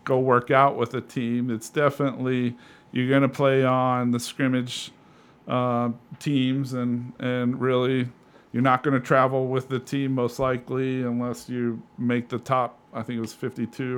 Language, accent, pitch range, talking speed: English, American, 120-135 Hz, 170 wpm